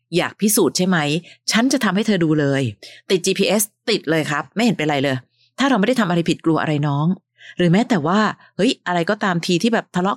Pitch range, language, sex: 150-195 Hz, Thai, female